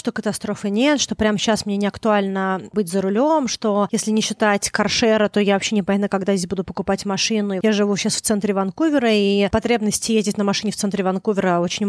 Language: Russian